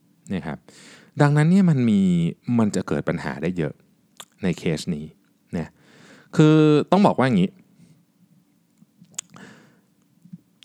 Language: Thai